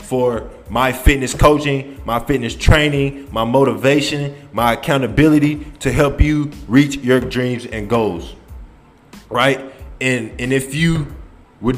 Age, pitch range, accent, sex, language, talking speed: 20-39, 115-145 Hz, American, male, English, 125 wpm